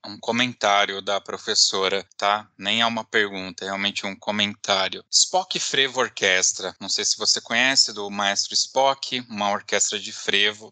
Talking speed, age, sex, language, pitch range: 155 wpm, 20-39, male, Portuguese, 105-135 Hz